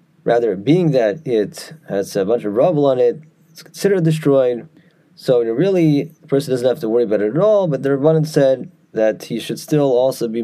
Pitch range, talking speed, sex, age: 115-160 Hz, 220 wpm, male, 30-49